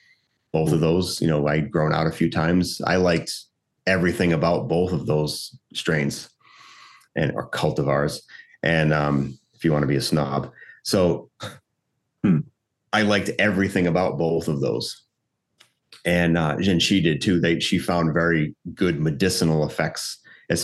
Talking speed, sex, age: 155 wpm, male, 30-49